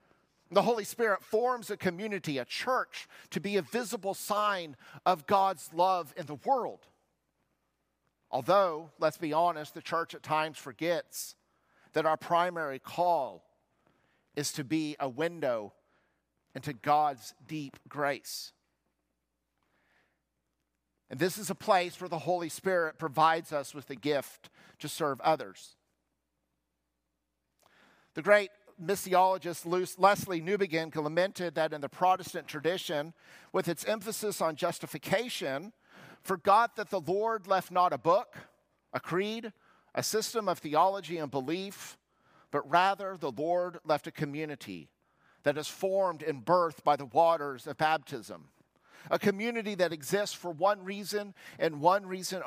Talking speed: 135 wpm